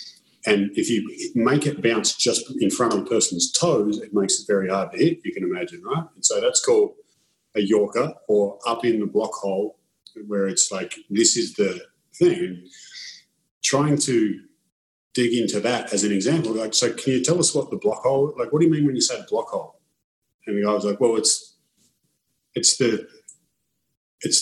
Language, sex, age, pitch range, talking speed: English, male, 30-49, 105-150 Hz, 200 wpm